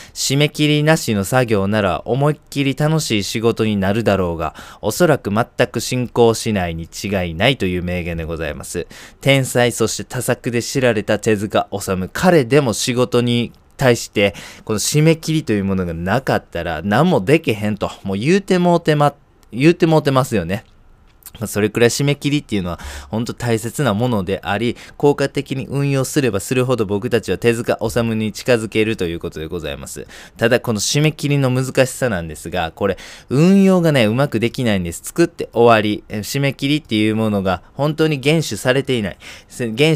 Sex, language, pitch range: male, Japanese, 100-135 Hz